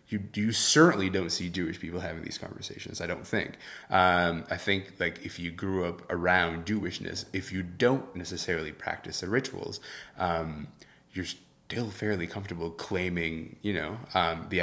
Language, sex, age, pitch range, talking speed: English, male, 20-39, 85-105 Hz, 165 wpm